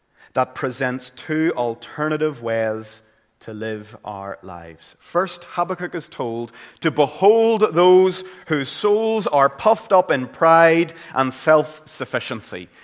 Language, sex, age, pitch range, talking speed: English, male, 30-49, 115-170 Hz, 115 wpm